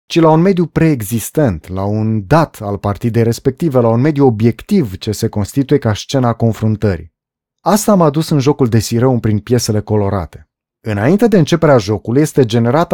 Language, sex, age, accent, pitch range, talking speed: Romanian, male, 30-49, native, 105-155 Hz, 170 wpm